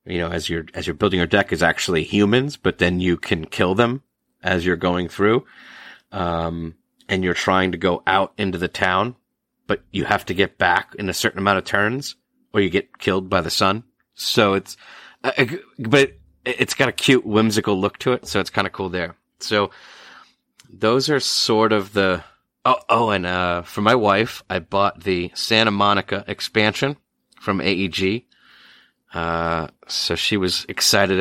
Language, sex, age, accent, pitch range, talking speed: English, male, 30-49, American, 90-100 Hz, 185 wpm